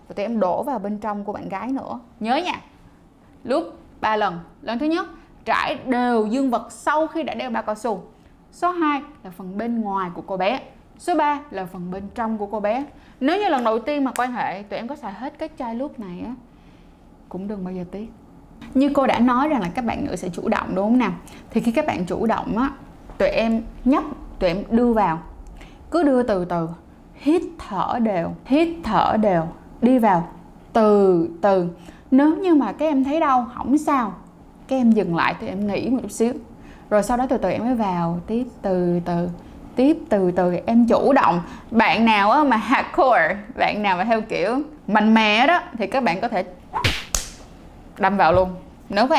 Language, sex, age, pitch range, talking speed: Vietnamese, female, 10-29, 190-270 Hz, 210 wpm